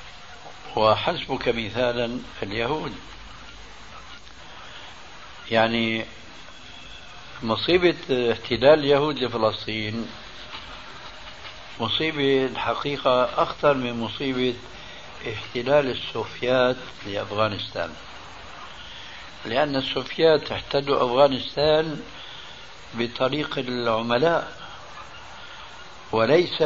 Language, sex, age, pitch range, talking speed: Arabic, male, 60-79, 115-145 Hz, 50 wpm